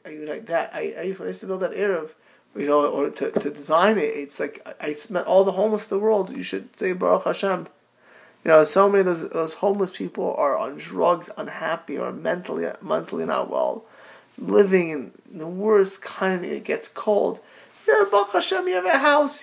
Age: 20-39